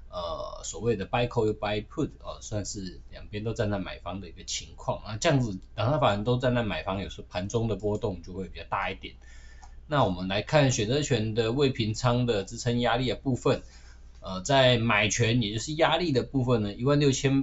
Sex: male